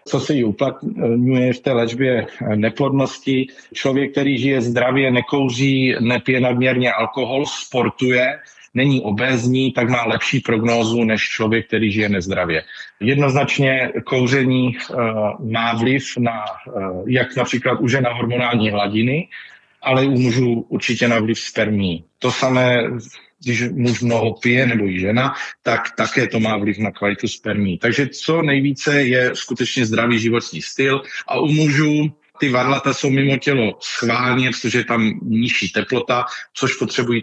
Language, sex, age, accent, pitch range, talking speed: Czech, male, 40-59, native, 110-130 Hz, 140 wpm